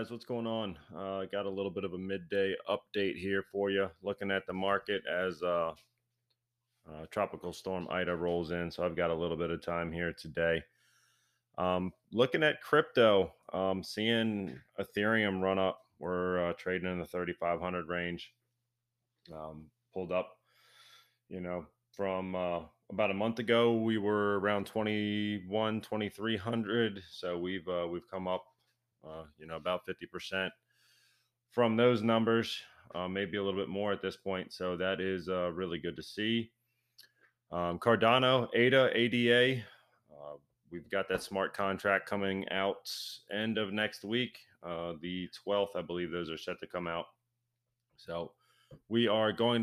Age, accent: 30-49, American